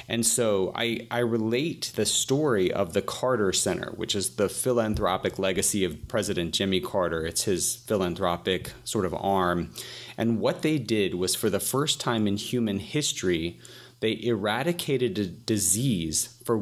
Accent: American